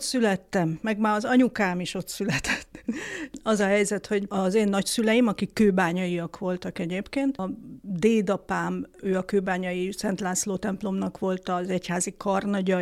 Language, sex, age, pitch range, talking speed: Hungarian, female, 50-69, 190-220 Hz, 150 wpm